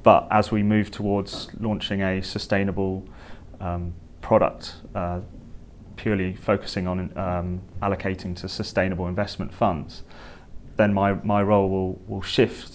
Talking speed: 125 wpm